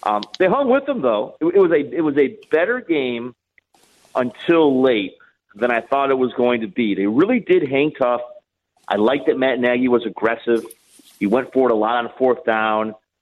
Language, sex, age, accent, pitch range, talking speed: English, male, 40-59, American, 115-175 Hz, 210 wpm